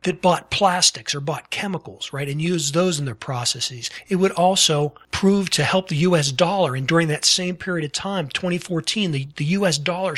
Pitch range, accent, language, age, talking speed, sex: 145-175 Hz, American, English, 40-59, 200 wpm, male